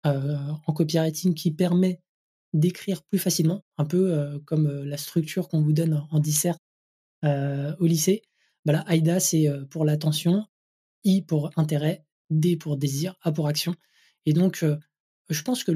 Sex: male